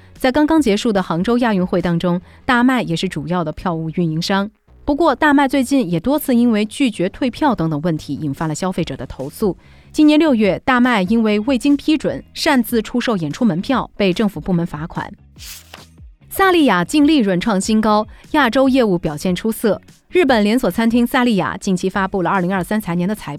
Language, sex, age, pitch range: Chinese, female, 30-49, 175-255 Hz